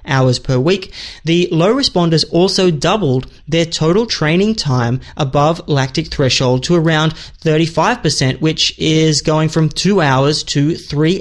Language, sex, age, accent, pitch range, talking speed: English, male, 20-39, Australian, 135-175 Hz, 140 wpm